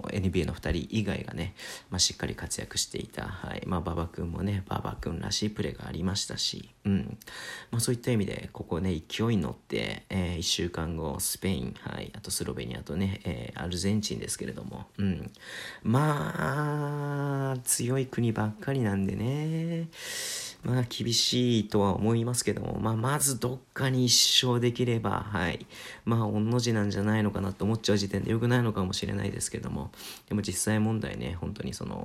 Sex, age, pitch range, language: male, 40-59, 95-115 Hz, Japanese